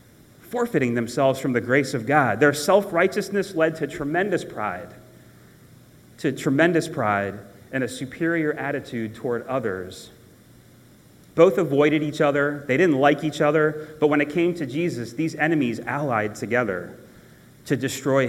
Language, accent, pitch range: English, American, 120-165 Hz